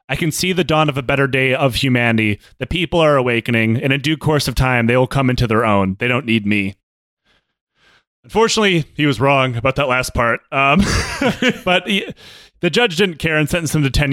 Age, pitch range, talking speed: 30-49, 130-155 Hz, 220 wpm